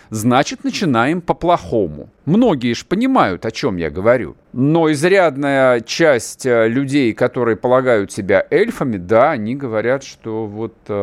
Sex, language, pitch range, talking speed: male, Russian, 105-150 Hz, 125 wpm